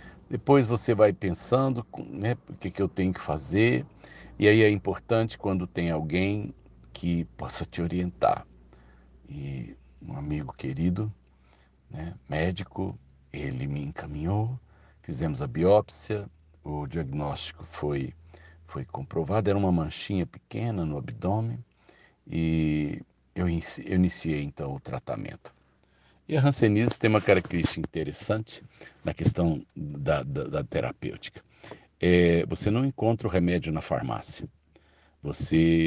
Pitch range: 80-105 Hz